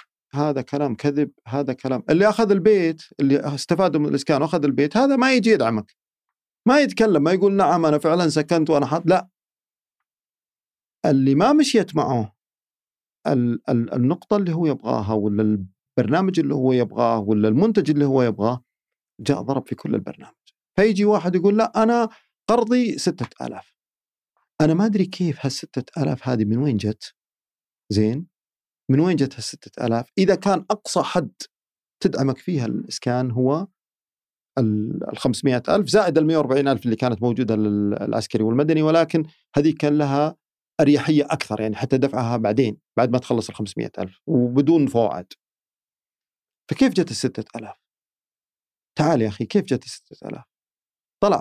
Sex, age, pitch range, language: male, 40-59, 120-170 Hz, Arabic